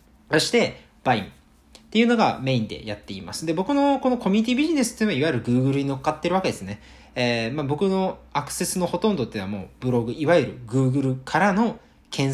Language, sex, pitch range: Japanese, male, 115-185 Hz